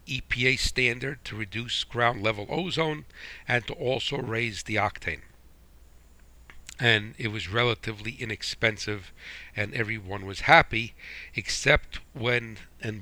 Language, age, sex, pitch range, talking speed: English, 60-79, male, 95-125 Hz, 115 wpm